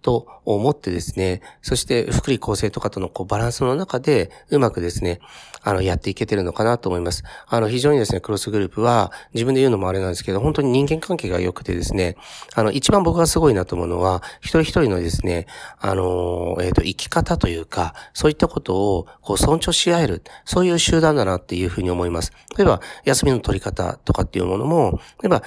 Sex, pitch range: male, 90-125 Hz